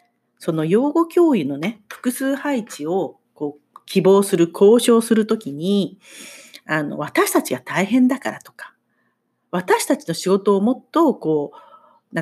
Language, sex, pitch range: Japanese, female, 180-290 Hz